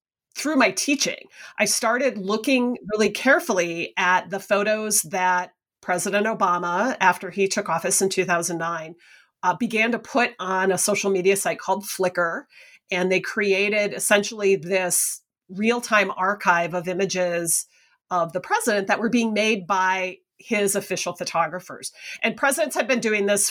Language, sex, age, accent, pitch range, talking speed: English, female, 40-59, American, 180-220 Hz, 145 wpm